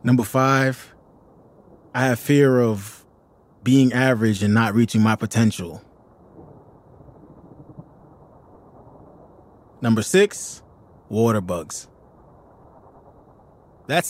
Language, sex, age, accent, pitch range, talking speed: English, male, 20-39, American, 100-130 Hz, 75 wpm